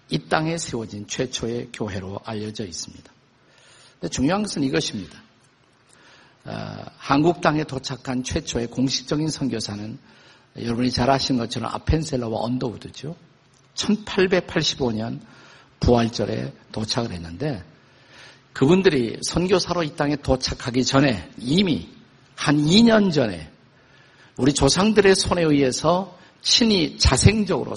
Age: 50-69